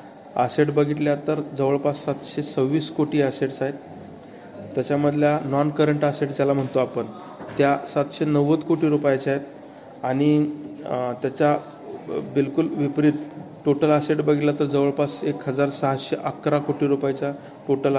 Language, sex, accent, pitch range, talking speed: Marathi, male, native, 130-150 Hz, 95 wpm